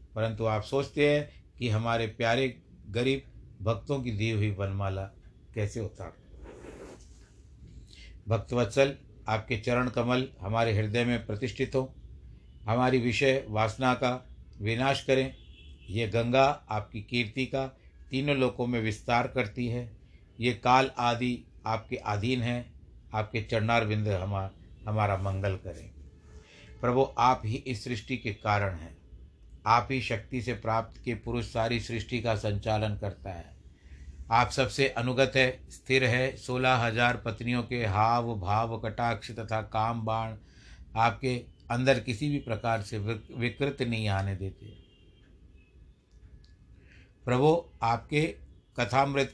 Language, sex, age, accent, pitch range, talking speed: Hindi, male, 60-79, native, 100-125 Hz, 125 wpm